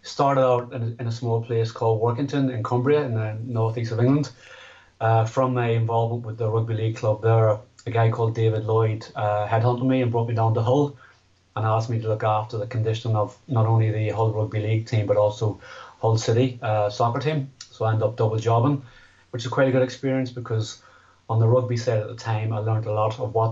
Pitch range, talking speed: 110-120 Hz, 225 wpm